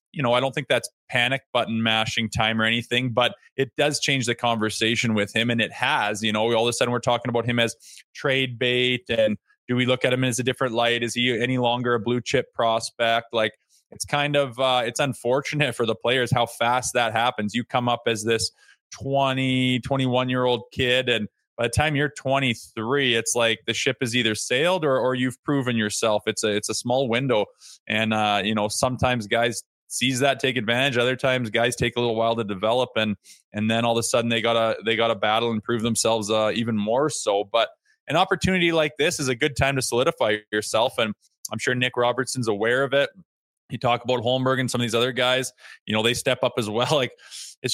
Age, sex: 20-39, male